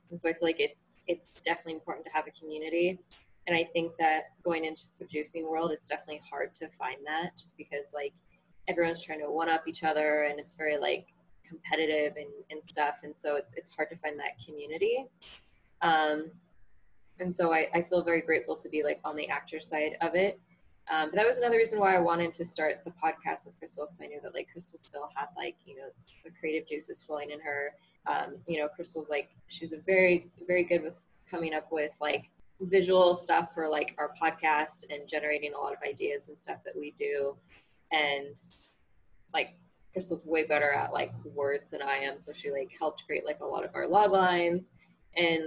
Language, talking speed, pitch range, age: English, 210 wpm, 150-175 Hz, 20-39